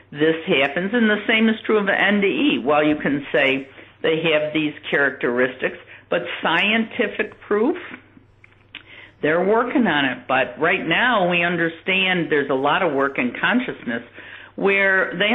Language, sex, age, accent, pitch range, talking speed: English, female, 60-79, American, 150-200 Hz, 155 wpm